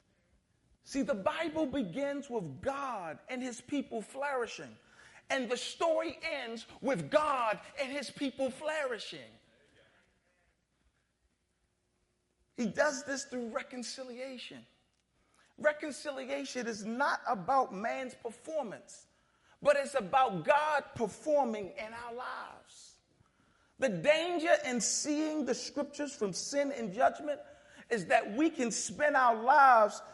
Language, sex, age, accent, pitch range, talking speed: English, male, 40-59, American, 235-300 Hz, 110 wpm